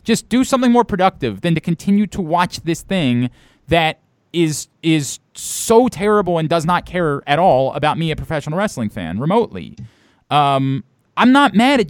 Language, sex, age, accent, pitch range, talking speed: English, male, 30-49, American, 130-205 Hz, 175 wpm